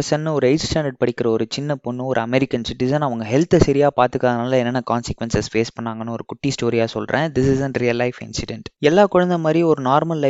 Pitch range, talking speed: 120-150 Hz, 60 wpm